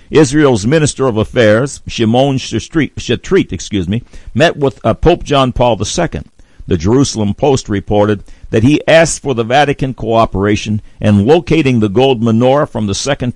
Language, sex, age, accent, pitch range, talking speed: English, male, 60-79, American, 95-130 Hz, 155 wpm